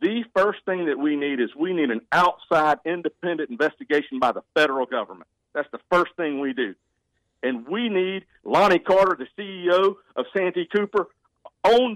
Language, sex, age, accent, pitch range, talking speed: English, male, 50-69, American, 150-210 Hz, 170 wpm